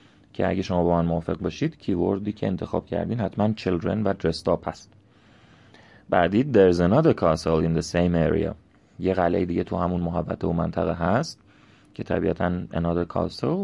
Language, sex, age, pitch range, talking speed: Persian, male, 30-49, 85-105 Hz, 165 wpm